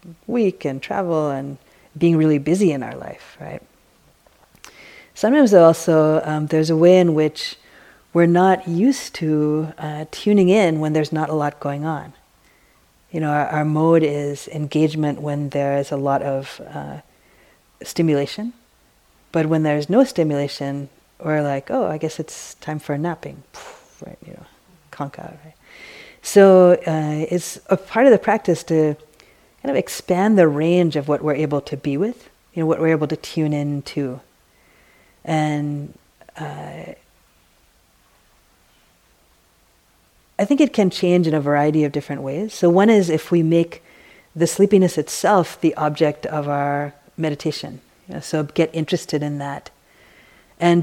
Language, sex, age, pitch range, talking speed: English, female, 40-59, 145-175 Hz, 155 wpm